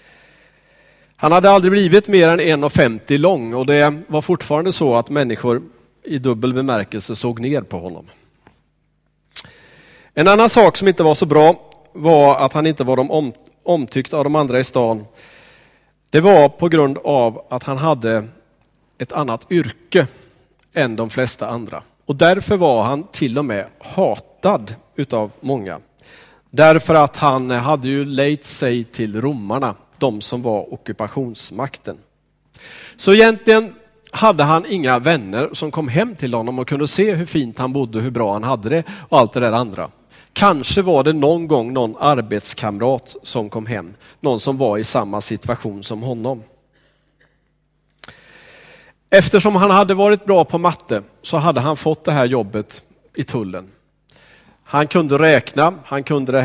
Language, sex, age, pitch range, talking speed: Swedish, male, 40-59, 125-160 Hz, 155 wpm